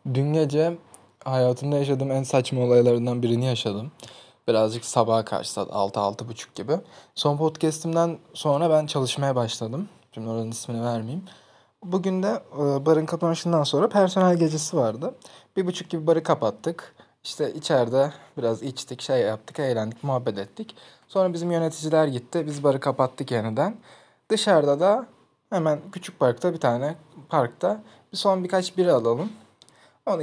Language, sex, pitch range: Turkish, male, 125-170 Hz